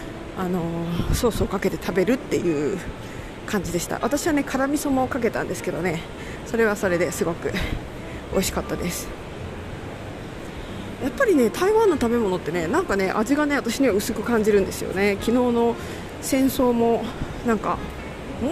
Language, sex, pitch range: Japanese, female, 195-290 Hz